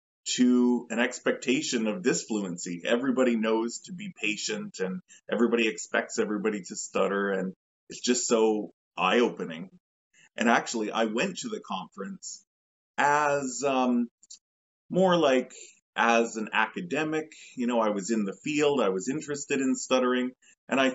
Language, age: English, 20-39